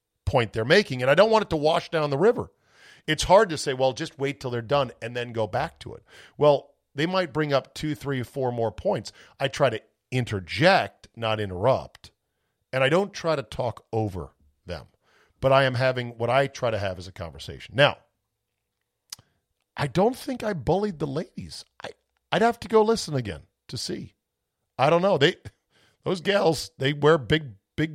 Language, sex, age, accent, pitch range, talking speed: English, male, 50-69, American, 115-160 Hz, 200 wpm